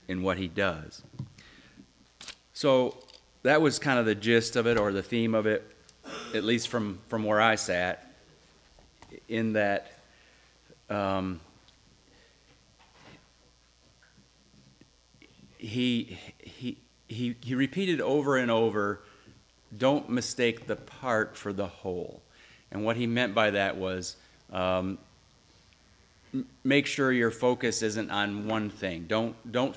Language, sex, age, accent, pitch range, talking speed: English, male, 40-59, American, 95-115 Hz, 125 wpm